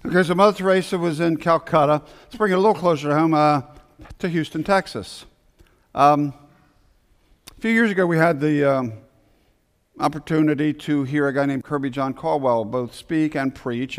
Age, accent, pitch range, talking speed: 50-69, American, 135-160 Hz, 170 wpm